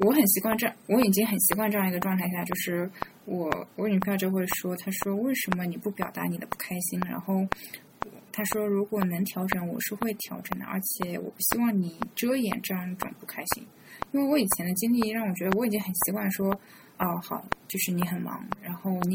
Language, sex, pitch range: Chinese, female, 180-215 Hz